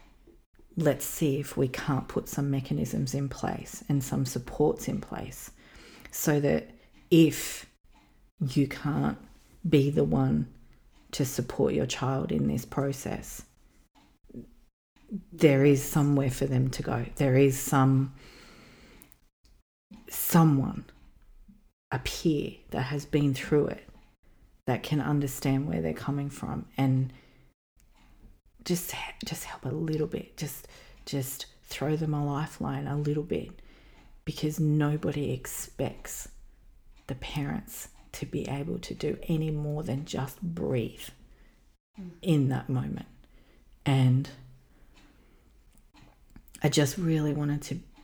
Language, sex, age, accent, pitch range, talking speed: English, female, 40-59, Australian, 135-155 Hz, 120 wpm